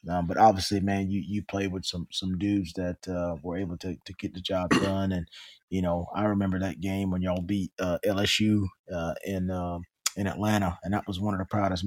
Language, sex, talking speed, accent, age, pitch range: English, male, 225 wpm, American, 20-39, 85-100 Hz